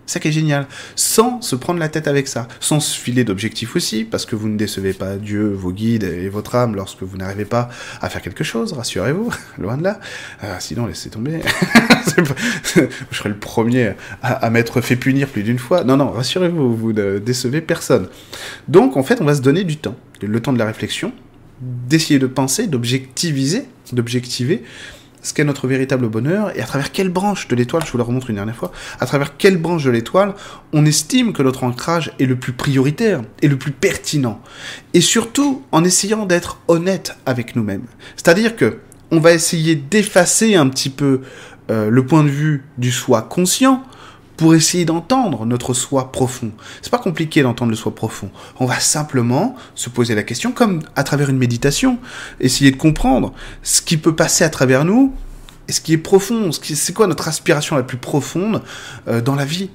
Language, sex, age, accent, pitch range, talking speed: French, male, 20-39, French, 120-165 Hz, 200 wpm